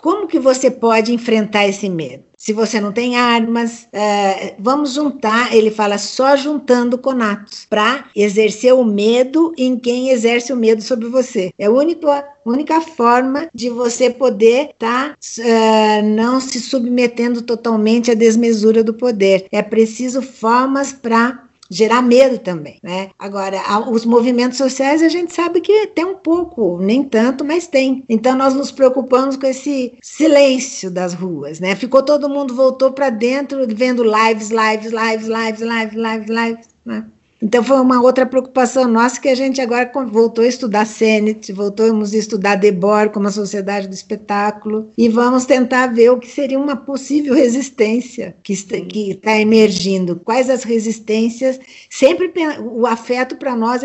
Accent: Brazilian